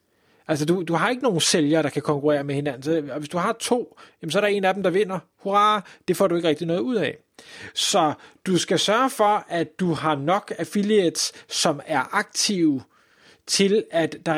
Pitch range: 155-210 Hz